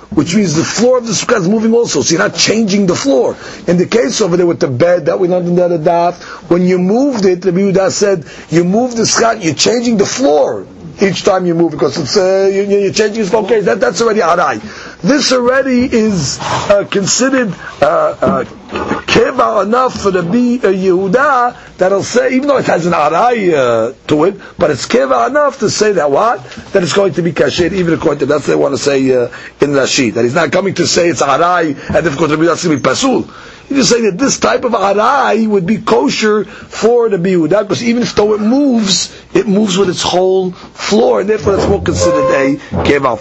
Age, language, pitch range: 50-69, English, 145-215 Hz